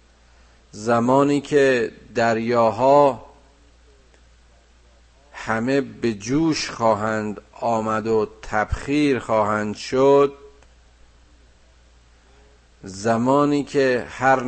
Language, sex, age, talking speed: Persian, male, 50-69, 60 wpm